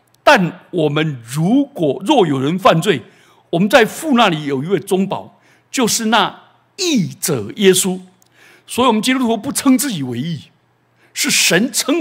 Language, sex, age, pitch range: Chinese, male, 60-79, 150-230 Hz